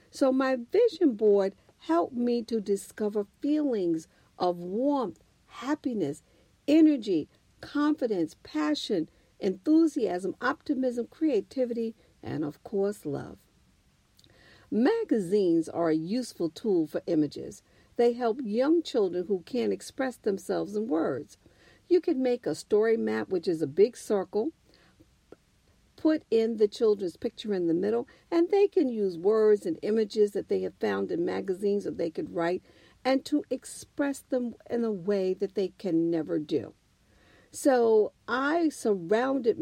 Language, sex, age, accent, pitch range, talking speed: English, female, 50-69, American, 200-275 Hz, 135 wpm